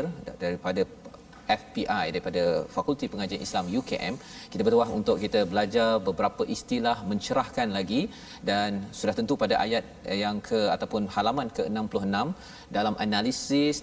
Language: Malayalam